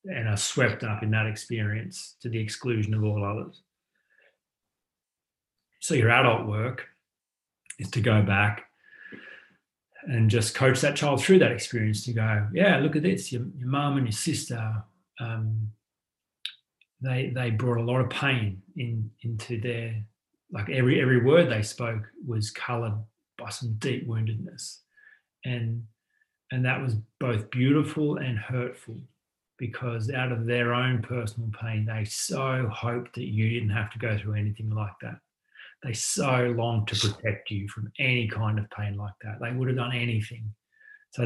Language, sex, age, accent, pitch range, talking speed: English, male, 30-49, Australian, 110-130 Hz, 160 wpm